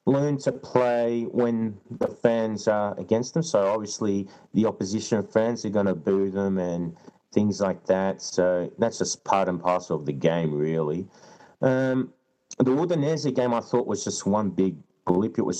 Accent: Australian